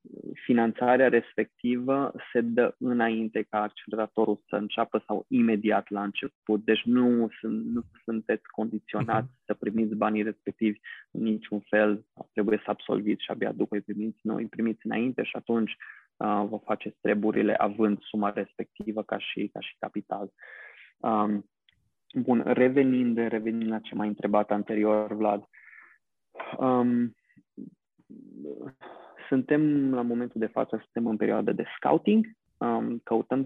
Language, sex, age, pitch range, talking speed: Romanian, male, 20-39, 110-125 Hz, 125 wpm